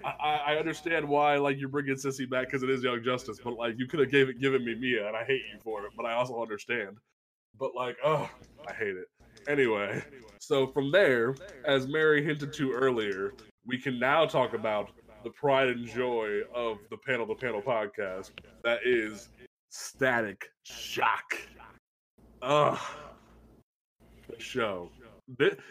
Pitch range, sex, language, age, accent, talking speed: 125-150 Hz, male, English, 20-39, American, 170 wpm